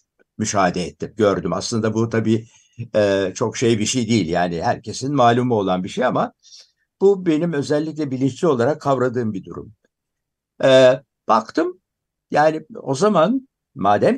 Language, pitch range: Turkish, 105-140 Hz